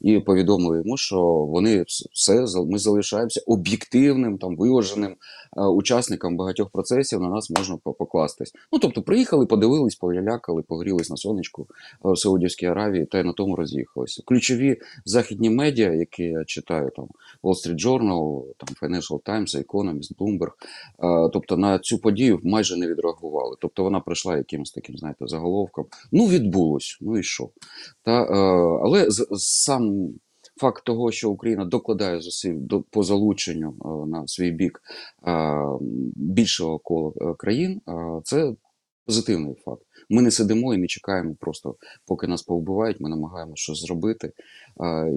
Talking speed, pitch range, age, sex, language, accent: 145 wpm, 80-105 Hz, 30-49, male, Ukrainian, native